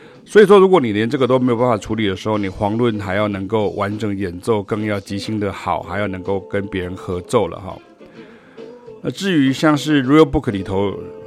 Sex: male